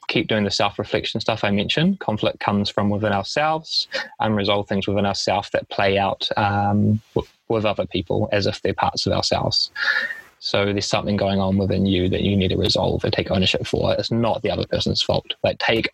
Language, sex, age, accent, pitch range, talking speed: English, male, 20-39, Australian, 100-125 Hz, 200 wpm